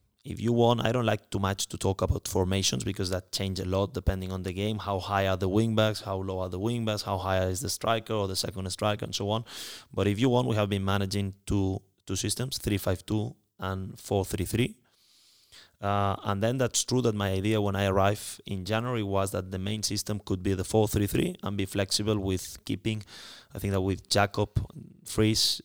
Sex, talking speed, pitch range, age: male, 210 wpm, 95-110 Hz, 20-39